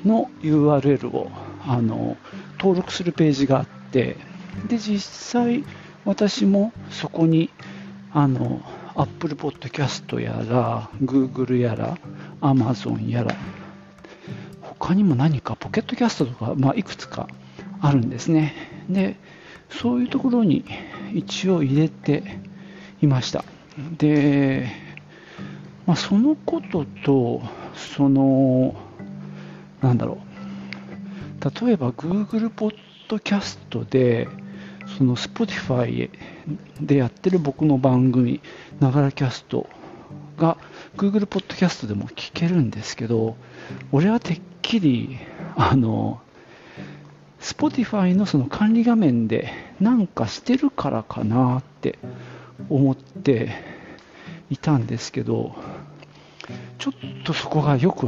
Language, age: Japanese, 50-69